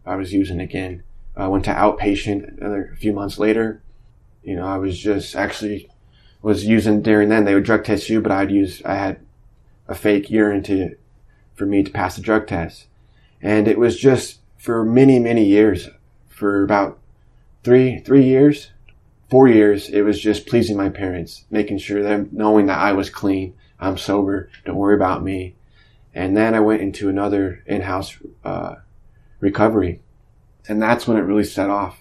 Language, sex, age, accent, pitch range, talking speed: English, male, 20-39, American, 100-110 Hz, 175 wpm